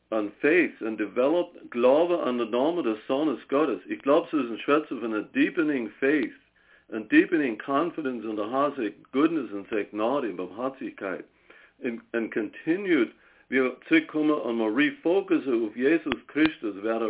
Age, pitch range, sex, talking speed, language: 60-79, 110-155 Hz, male, 155 wpm, English